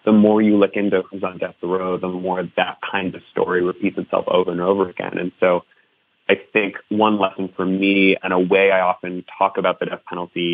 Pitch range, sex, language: 90-100 Hz, male, English